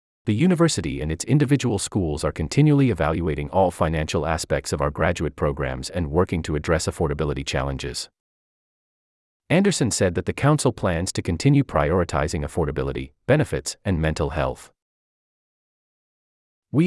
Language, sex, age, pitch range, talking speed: English, male, 30-49, 75-125 Hz, 130 wpm